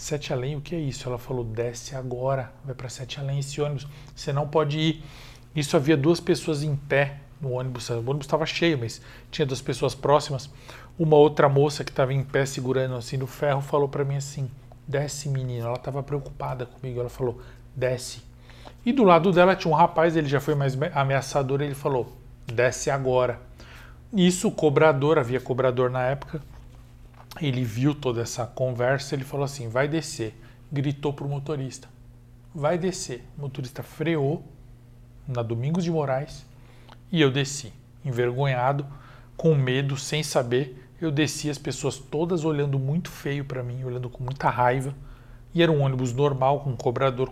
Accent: Brazilian